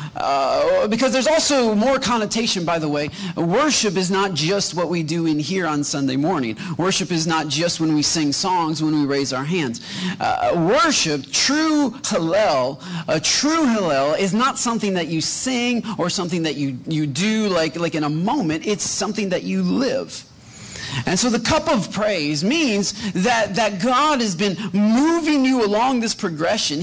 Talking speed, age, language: 180 wpm, 30-49, English